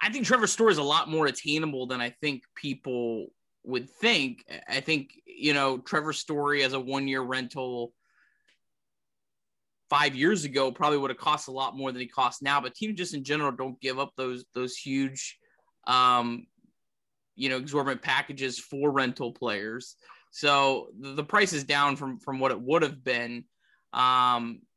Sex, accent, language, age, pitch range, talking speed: male, American, English, 20-39, 130-155 Hz, 170 wpm